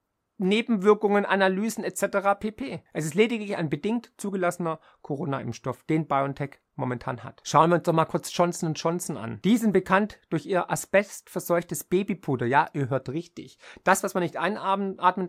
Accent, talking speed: German, 160 wpm